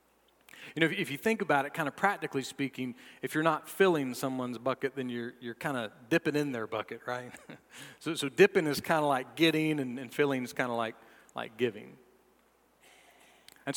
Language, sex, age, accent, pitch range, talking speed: English, male, 40-59, American, 125-155 Hz, 195 wpm